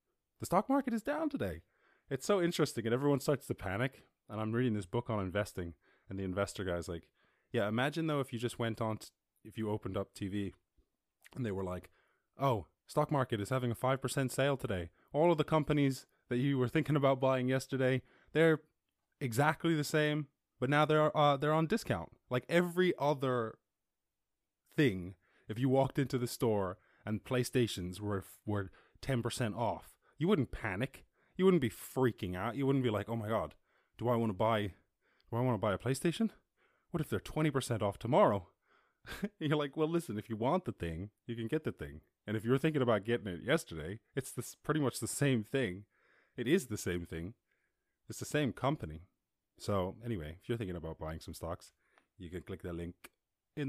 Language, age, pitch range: English, 20-39, 100-140 Hz